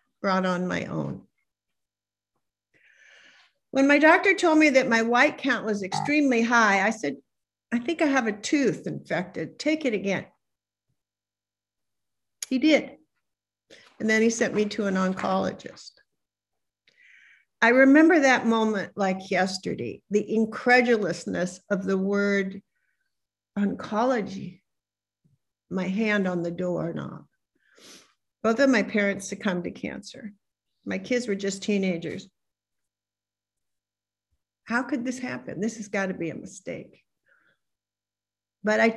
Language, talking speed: English, 120 wpm